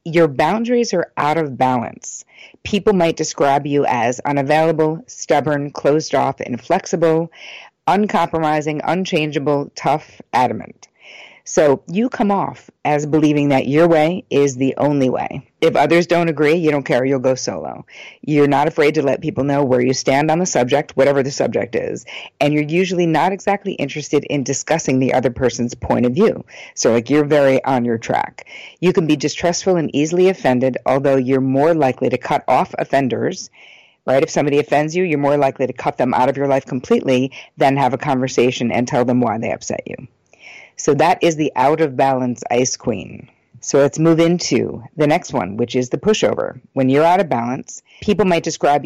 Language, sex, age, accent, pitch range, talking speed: English, female, 50-69, American, 130-165 Hz, 185 wpm